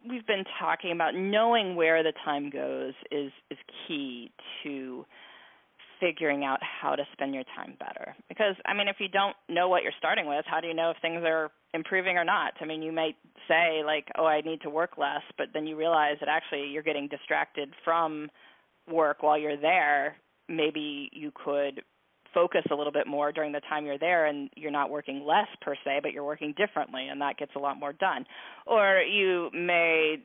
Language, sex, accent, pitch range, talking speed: English, female, American, 145-180 Hz, 200 wpm